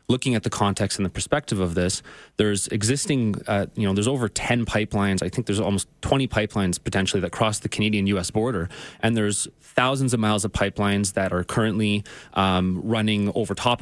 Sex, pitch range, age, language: male, 100-125 Hz, 20-39, English